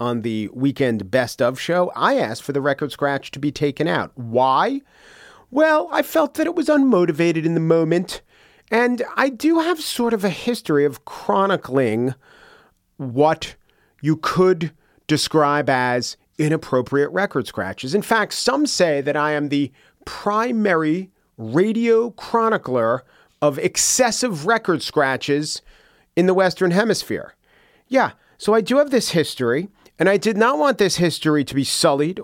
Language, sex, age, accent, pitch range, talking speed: English, male, 40-59, American, 135-205 Hz, 150 wpm